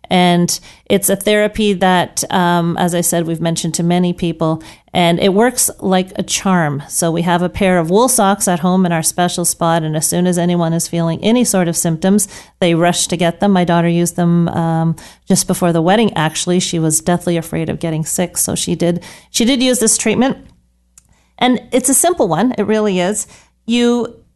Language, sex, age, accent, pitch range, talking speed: English, female, 40-59, American, 170-210 Hz, 205 wpm